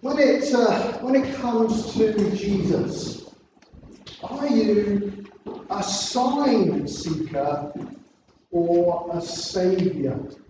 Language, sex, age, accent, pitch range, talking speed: English, male, 40-59, British, 185-245 Hz, 80 wpm